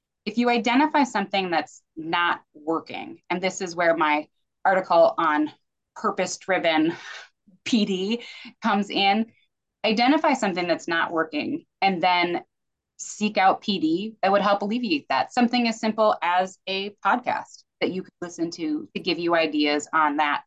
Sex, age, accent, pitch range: female, 20-39, American, 165-220 Hz